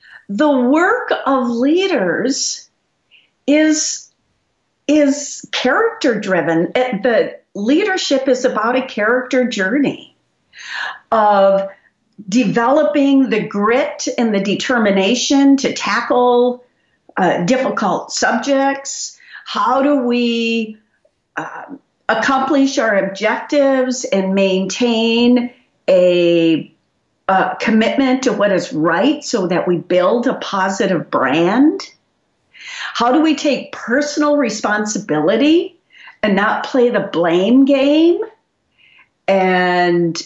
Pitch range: 210-280 Hz